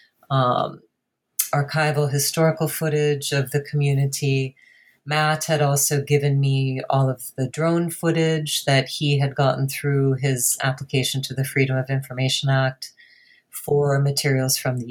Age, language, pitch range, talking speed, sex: 40-59, English, 135-155 Hz, 135 wpm, female